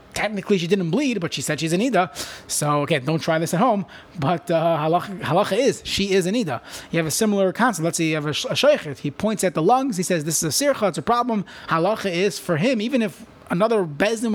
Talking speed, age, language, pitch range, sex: 245 wpm, 30-49, English, 160-215 Hz, male